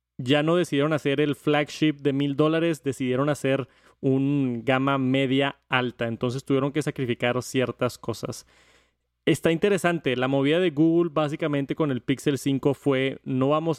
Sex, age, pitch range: male, 20-39, 125-150 Hz